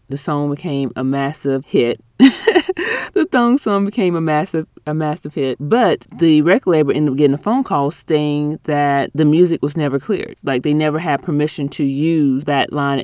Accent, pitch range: American, 145-185 Hz